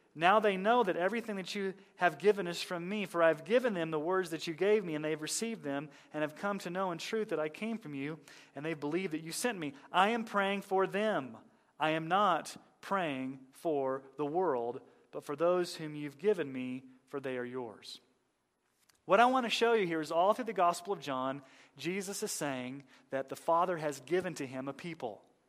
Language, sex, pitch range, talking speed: English, male, 150-210 Hz, 225 wpm